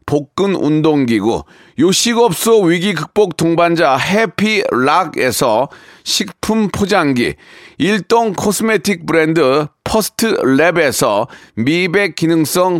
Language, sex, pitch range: Korean, male, 165-220 Hz